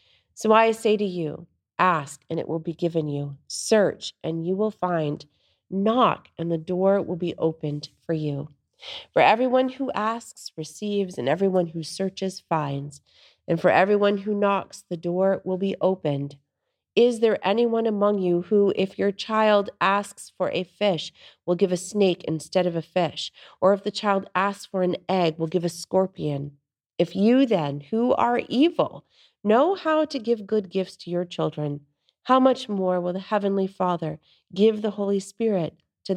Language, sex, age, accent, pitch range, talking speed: English, female, 40-59, American, 160-205 Hz, 175 wpm